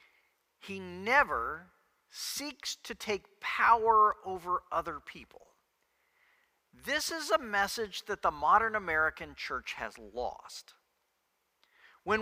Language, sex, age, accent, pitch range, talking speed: English, male, 50-69, American, 195-290 Hz, 105 wpm